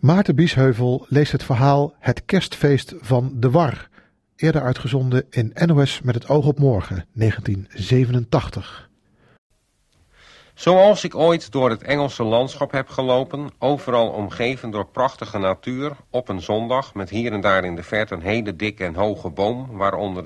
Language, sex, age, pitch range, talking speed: Dutch, male, 50-69, 105-135 Hz, 150 wpm